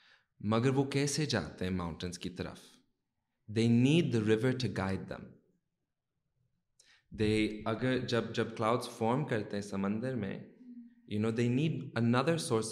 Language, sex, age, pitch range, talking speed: Urdu, male, 20-39, 105-130 Hz, 55 wpm